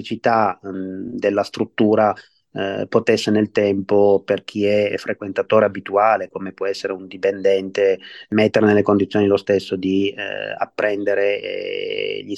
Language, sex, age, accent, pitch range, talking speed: Italian, male, 30-49, native, 100-115 Hz, 125 wpm